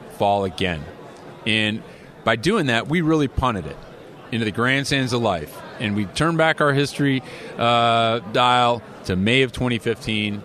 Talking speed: 160 wpm